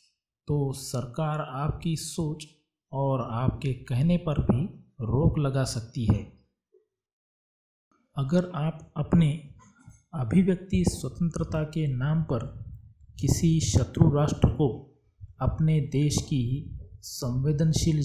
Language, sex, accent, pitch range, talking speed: Hindi, male, native, 125-160 Hz, 95 wpm